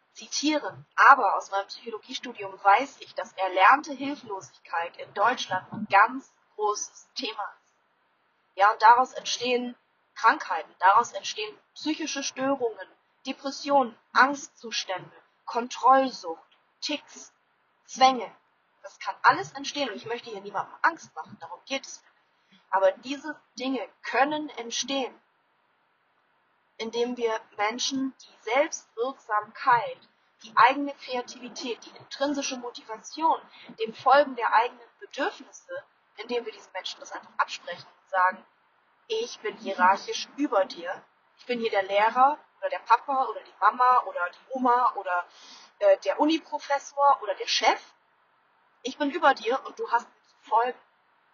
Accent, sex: German, female